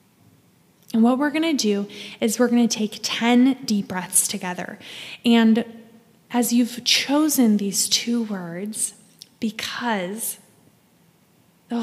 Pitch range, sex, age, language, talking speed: 205-240 Hz, female, 10-29, English, 120 wpm